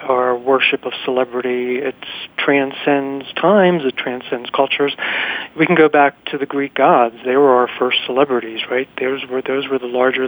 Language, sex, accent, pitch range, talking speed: English, male, American, 130-155 Hz, 175 wpm